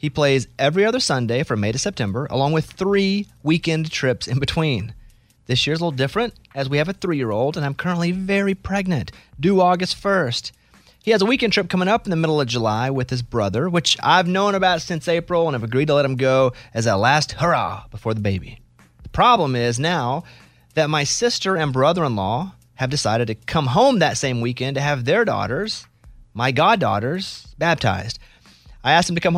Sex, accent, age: male, American, 30-49